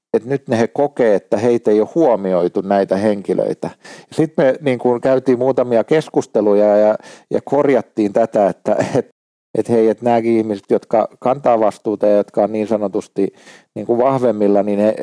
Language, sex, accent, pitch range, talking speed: Finnish, male, native, 105-125 Hz, 165 wpm